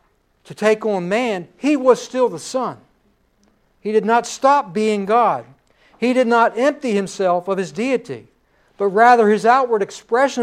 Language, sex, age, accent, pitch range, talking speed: English, male, 60-79, American, 185-240 Hz, 160 wpm